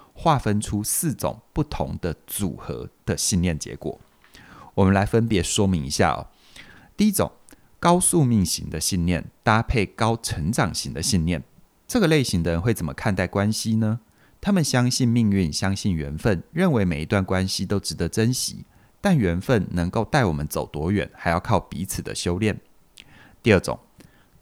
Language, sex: Chinese, male